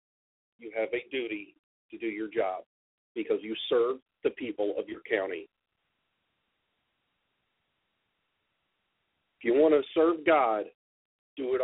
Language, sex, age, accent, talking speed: English, male, 50-69, American, 125 wpm